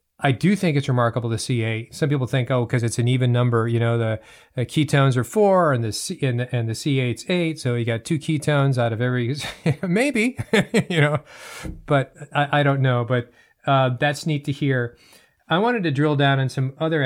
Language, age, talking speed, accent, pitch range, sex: English, 40-59, 220 wpm, American, 120-150 Hz, male